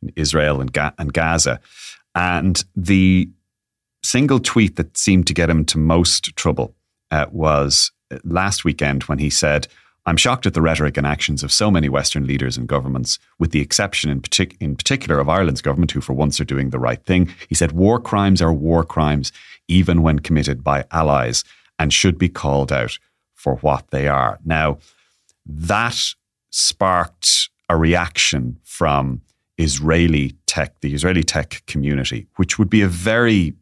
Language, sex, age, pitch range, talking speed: English, male, 30-49, 75-95 Hz, 170 wpm